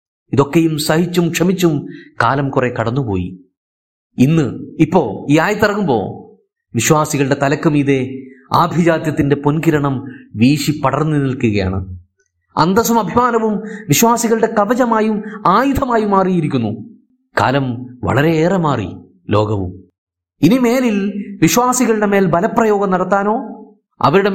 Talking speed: 85 wpm